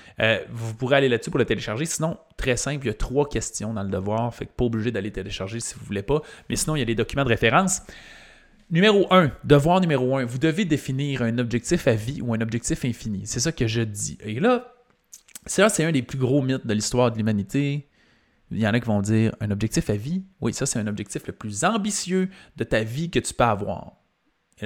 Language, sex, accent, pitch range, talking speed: French, male, Canadian, 115-165 Hz, 240 wpm